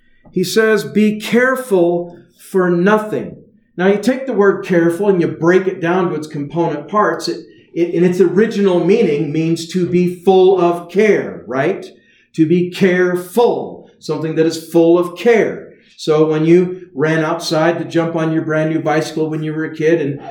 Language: English